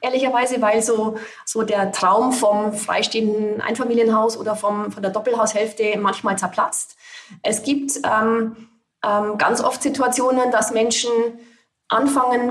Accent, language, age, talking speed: German, German, 30-49, 125 wpm